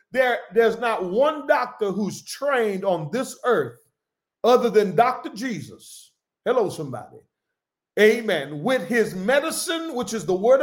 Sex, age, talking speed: male, 50-69, 135 wpm